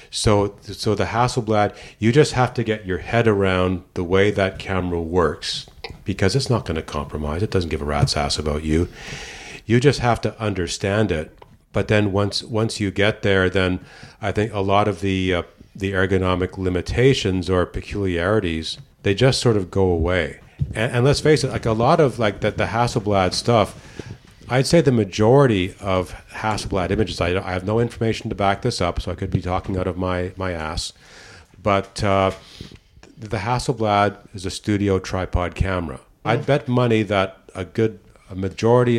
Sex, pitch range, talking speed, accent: male, 95-110 Hz, 185 wpm, American